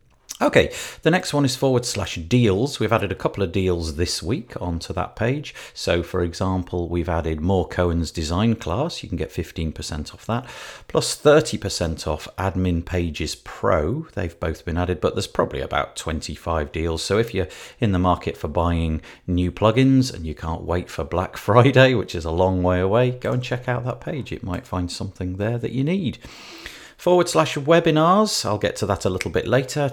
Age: 40-59